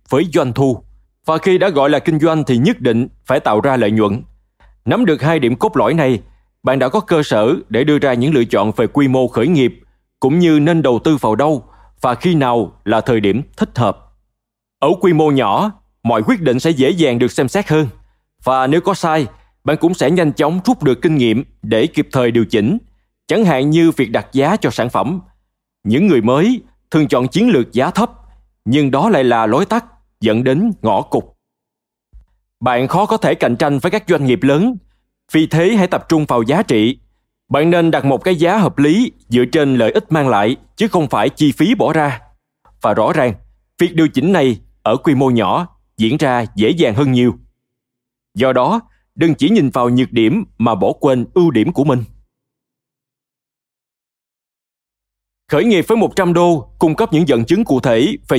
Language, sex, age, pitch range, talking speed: Vietnamese, male, 20-39, 120-165 Hz, 205 wpm